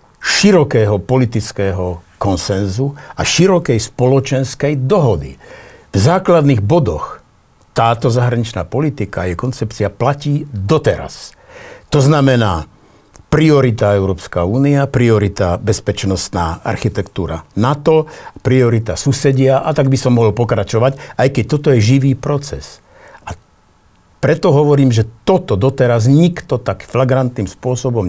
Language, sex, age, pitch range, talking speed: Slovak, male, 60-79, 105-135 Hz, 105 wpm